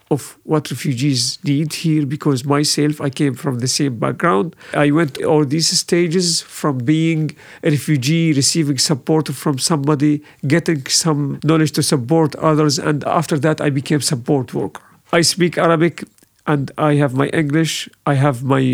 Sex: male